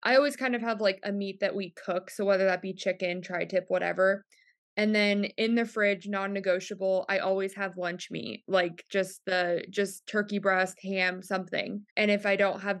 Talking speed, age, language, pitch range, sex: 195 wpm, 20-39, English, 185-205 Hz, female